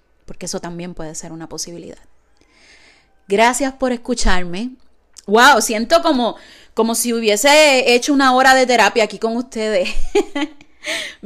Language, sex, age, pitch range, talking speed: Spanish, female, 30-49, 190-235 Hz, 135 wpm